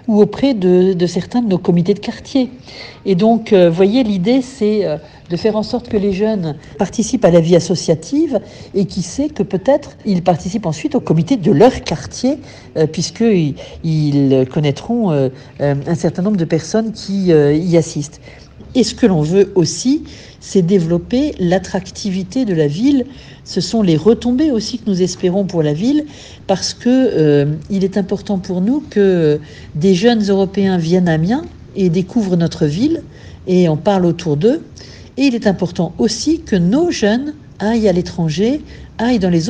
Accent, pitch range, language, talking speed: French, 165-225 Hz, French, 180 wpm